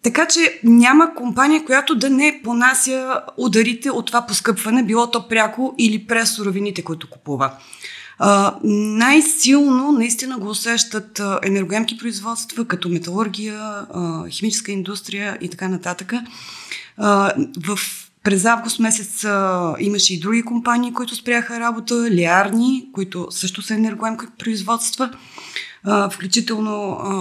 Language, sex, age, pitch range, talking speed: Bulgarian, female, 20-39, 190-240 Hz, 115 wpm